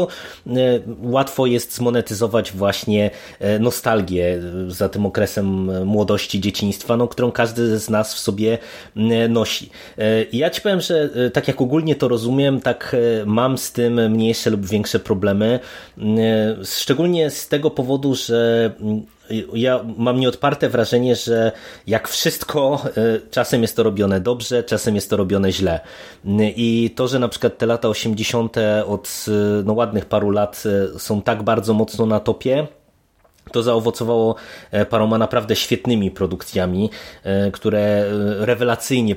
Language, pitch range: Polish, 100-120 Hz